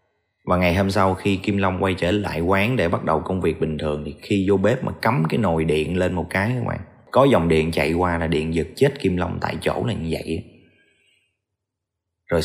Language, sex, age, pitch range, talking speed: Vietnamese, male, 20-39, 85-110 Hz, 235 wpm